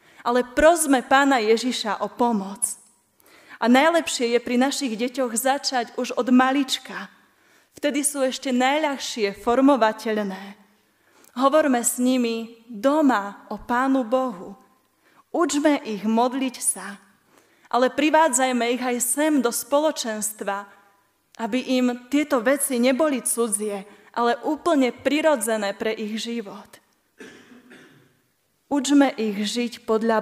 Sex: female